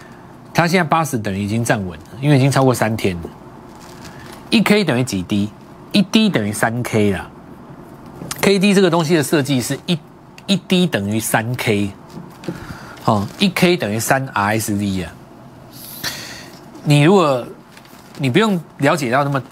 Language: Chinese